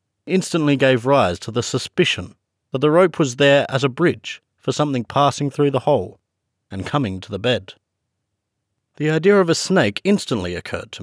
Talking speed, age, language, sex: 180 wpm, 40-59, English, male